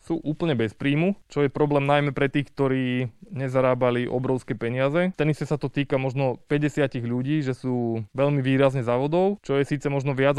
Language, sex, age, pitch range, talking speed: Slovak, male, 20-39, 125-150 Hz, 180 wpm